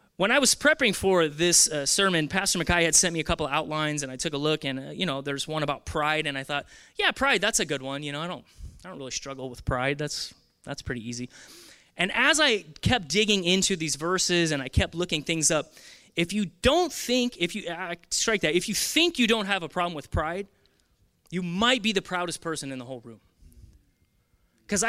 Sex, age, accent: male, 30-49, American